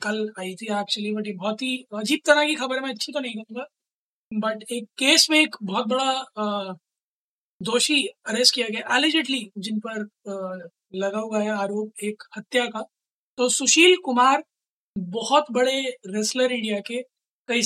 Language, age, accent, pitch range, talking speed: Hindi, 20-39, native, 215-250 Hz, 165 wpm